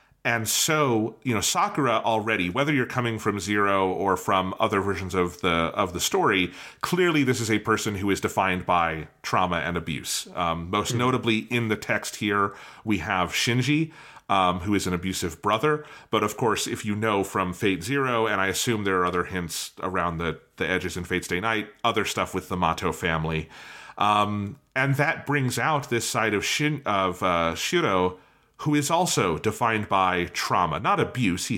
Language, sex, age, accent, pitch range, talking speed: English, male, 30-49, American, 95-125 Hz, 190 wpm